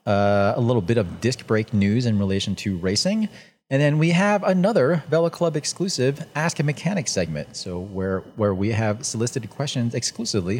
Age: 30-49